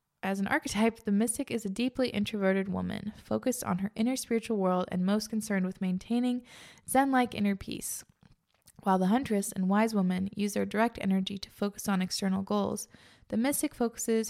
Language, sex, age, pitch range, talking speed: English, female, 20-39, 195-230 Hz, 175 wpm